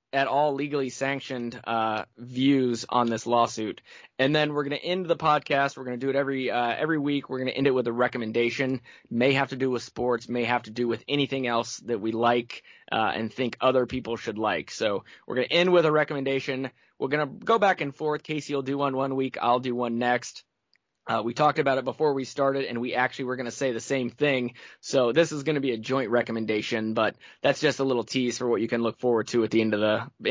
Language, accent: English, American